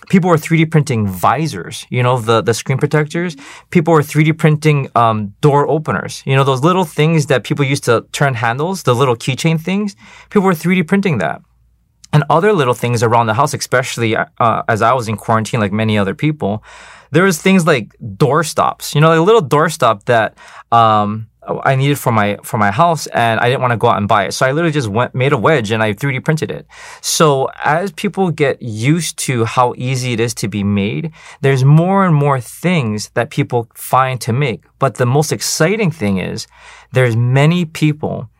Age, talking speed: 20-39, 210 wpm